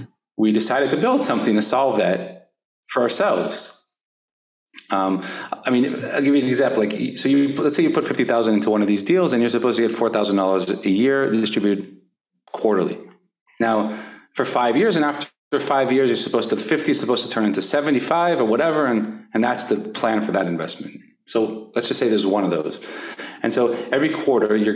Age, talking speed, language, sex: 30-49, 200 wpm, English, male